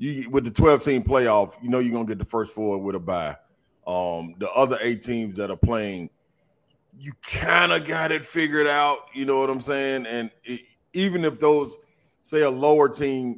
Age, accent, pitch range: 30-49, American, 110-140 Hz